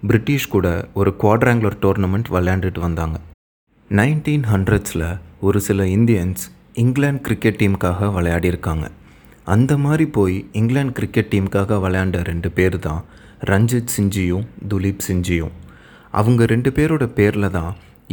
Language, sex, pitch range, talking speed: Tamil, male, 90-115 Hz, 115 wpm